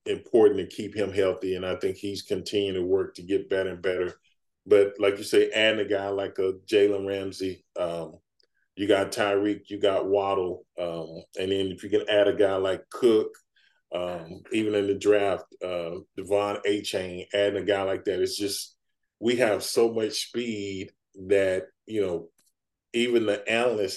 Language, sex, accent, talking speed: English, male, American, 185 wpm